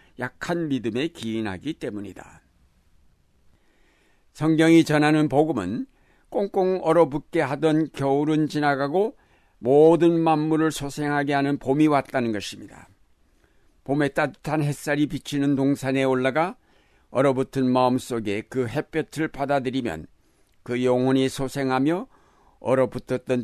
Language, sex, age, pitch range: Korean, male, 60-79, 125-155 Hz